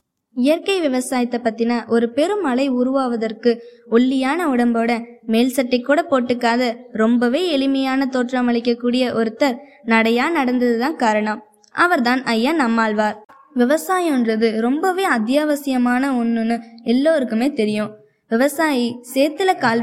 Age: 20-39